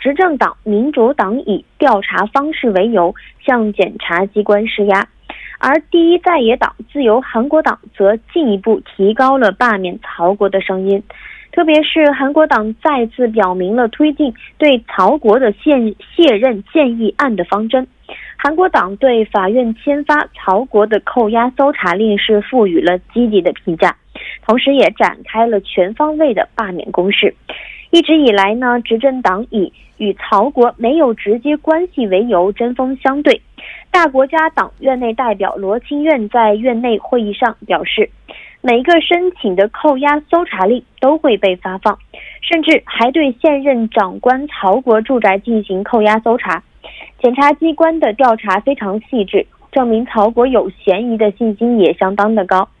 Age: 20-39